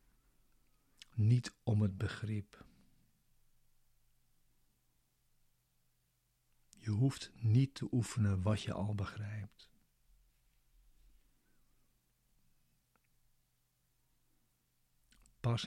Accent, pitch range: Dutch, 95-115 Hz